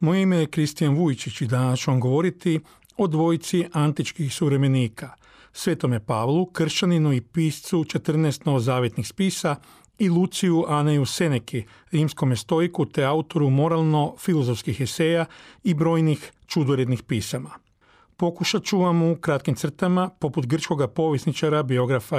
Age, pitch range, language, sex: 40-59, 135-170 Hz, Croatian, male